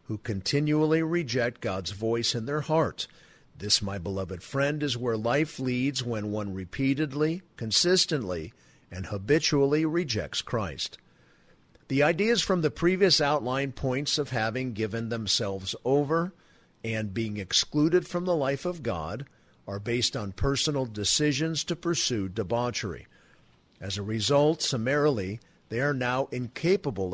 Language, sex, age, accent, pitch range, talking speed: English, male, 50-69, American, 105-150 Hz, 135 wpm